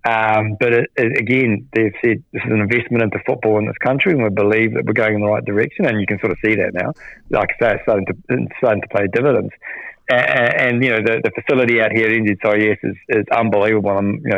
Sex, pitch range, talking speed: male, 110-130 Hz, 255 wpm